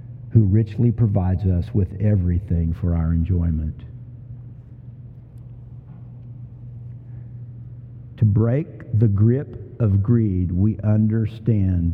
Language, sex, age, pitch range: Italian, male, 50-69, 100-120 Hz